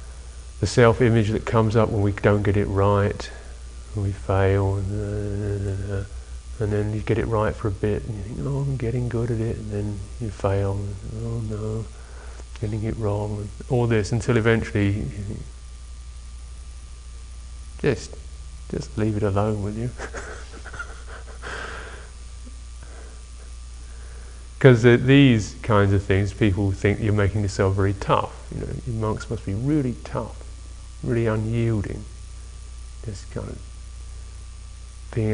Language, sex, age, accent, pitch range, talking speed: English, male, 30-49, British, 85-110 Hz, 135 wpm